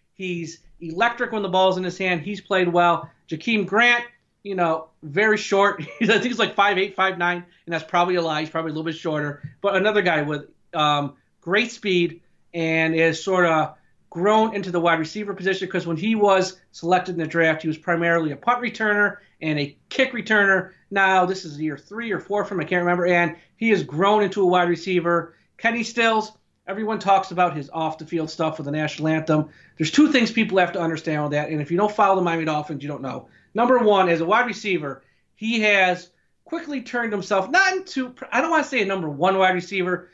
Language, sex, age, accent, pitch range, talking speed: English, male, 40-59, American, 160-215 Hz, 215 wpm